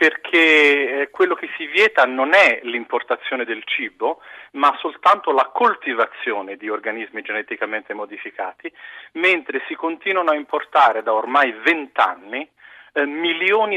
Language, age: Italian, 40-59